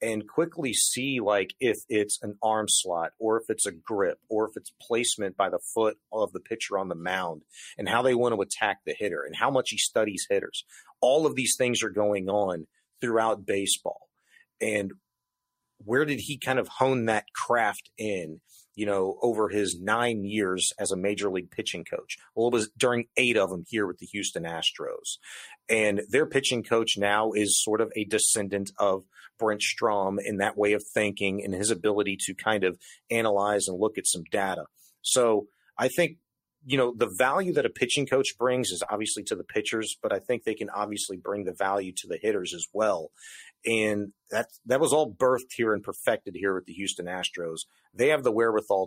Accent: American